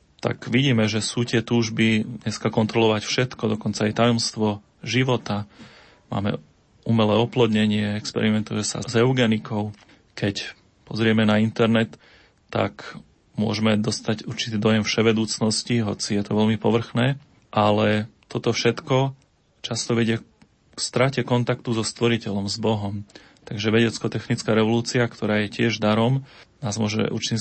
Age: 30-49